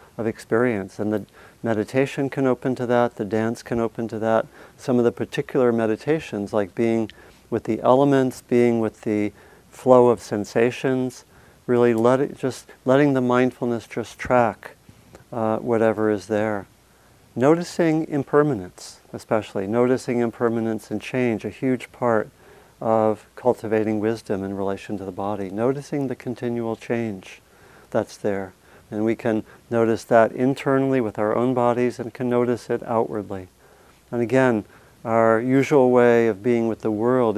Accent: American